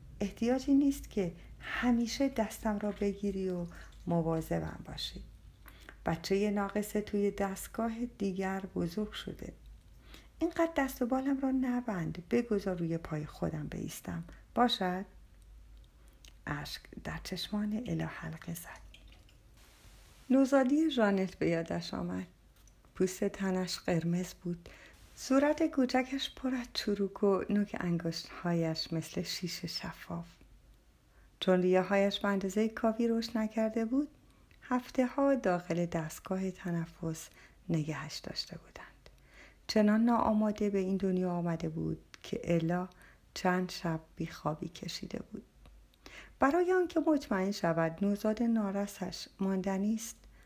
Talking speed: 105 wpm